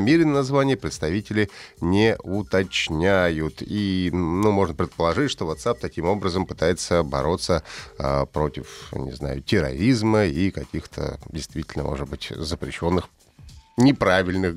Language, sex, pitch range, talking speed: Russian, male, 90-135 Hz, 110 wpm